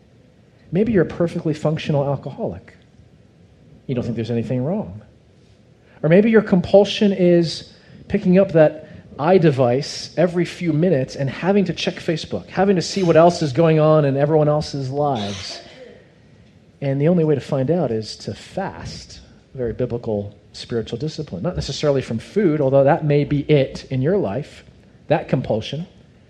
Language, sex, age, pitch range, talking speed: English, male, 40-59, 120-160 Hz, 160 wpm